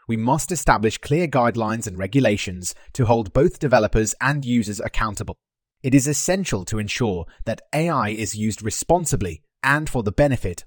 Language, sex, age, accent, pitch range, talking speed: English, male, 30-49, British, 105-140 Hz, 155 wpm